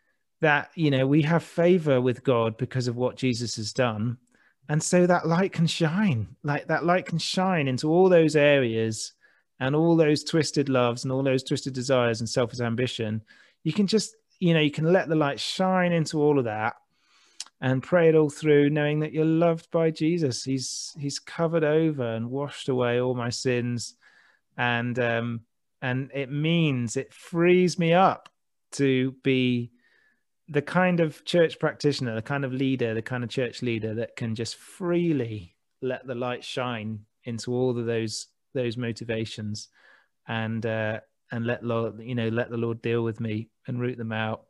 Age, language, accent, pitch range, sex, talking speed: 30-49, English, British, 115-155 Hz, male, 180 wpm